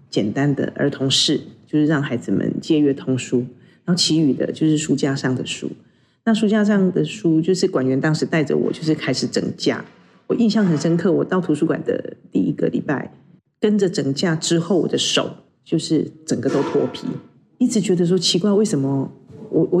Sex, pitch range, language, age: female, 145-180 Hz, Chinese, 40-59